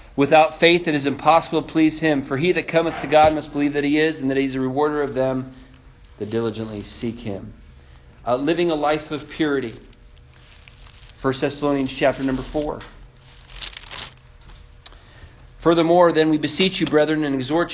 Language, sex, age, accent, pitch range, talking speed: English, male, 40-59, American, 135-170 Hz, 170 wpm